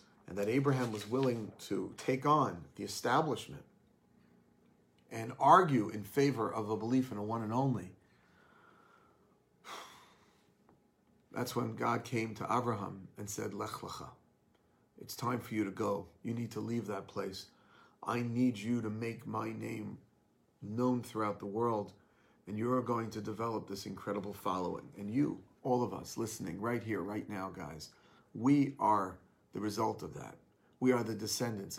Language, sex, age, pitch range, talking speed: English, male, 40-59, 105-130 Hz, 160 wpm